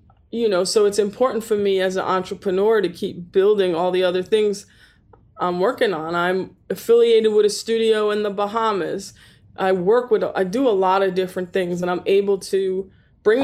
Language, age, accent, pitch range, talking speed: English, 20-39, American, 185-220 Hz, 190 wpm